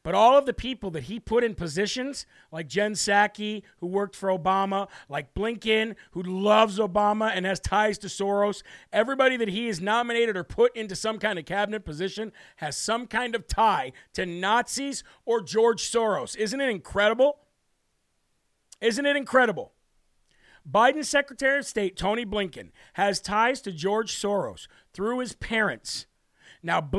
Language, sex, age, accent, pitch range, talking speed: English, male, 40-59, American, 200-235 Hz, 160 wpm